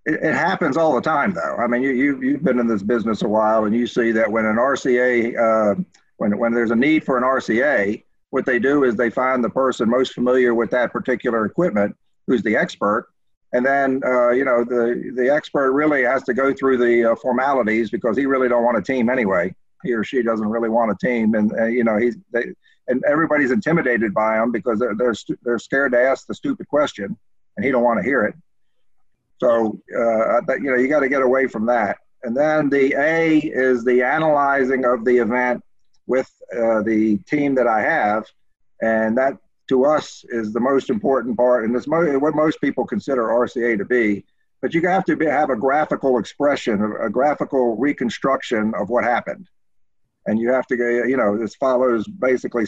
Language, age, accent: English, 50-69, American